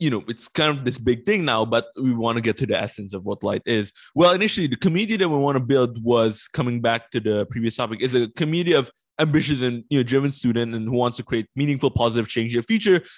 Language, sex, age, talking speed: English, male, 20-39, 265 wpm